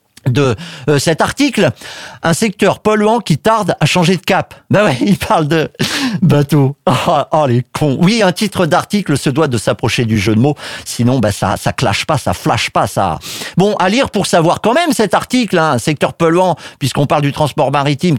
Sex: male